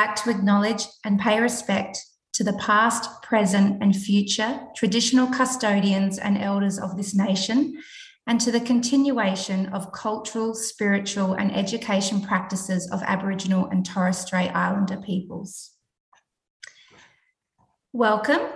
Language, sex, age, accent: English, female, 30-49, Australian